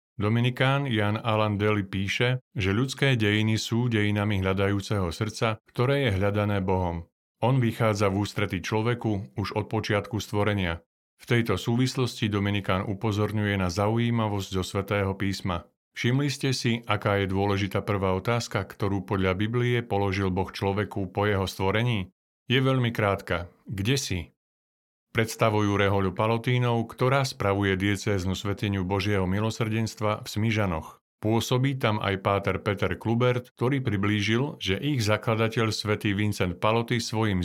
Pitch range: 100-115 Hz